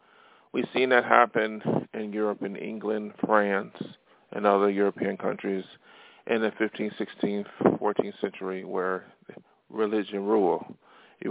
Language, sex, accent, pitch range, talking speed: English, male, American, 100-115 Hz, 120 wpm